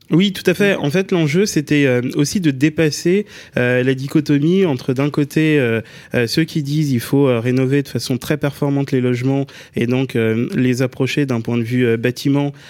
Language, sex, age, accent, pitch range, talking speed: French, male, 20-39, French, 125-150 Hz, 175 wpm